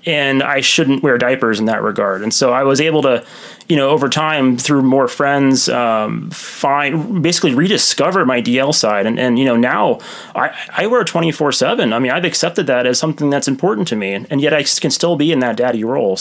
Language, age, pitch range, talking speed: English, 30-49, 120-150 Hz, 215 wpm